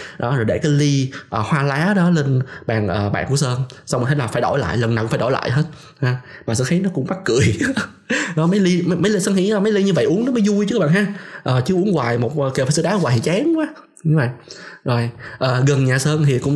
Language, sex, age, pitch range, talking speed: Vietnamese, male, 20-39, 120-165 Hz, 290 wpm